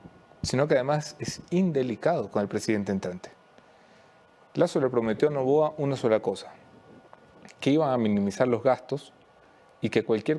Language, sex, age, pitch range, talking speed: English, male, 30-49, 115-150 Hz, 150 wpm